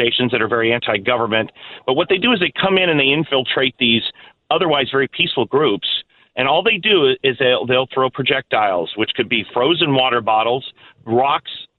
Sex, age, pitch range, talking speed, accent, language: male, 40-59, 120-155 Hz, 185 wpm, American, English